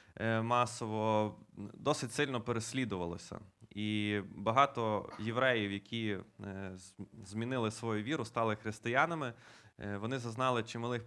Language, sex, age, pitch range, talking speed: Ukrainian, male, 20-39, 105-125 Hz, 85 wpm